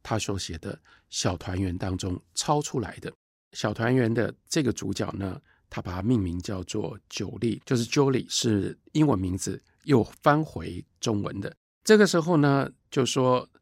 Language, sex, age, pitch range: Chinese, male, 50-69, 95-135 Hz